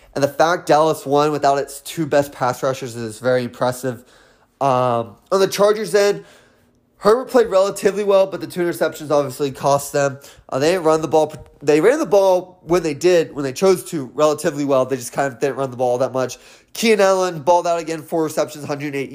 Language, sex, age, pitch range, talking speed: English, male, 20-39, 140-175 Hz, 195 wpm